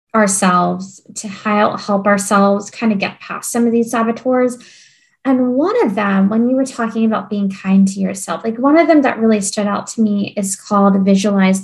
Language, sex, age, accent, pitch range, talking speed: English, female, 10-29, American, 200-250 Hz, 195 wpm